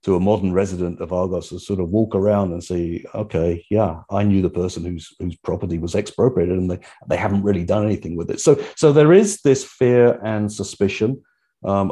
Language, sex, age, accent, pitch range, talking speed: English, male, 40-59, British, 90-115 Hz, 210 wpm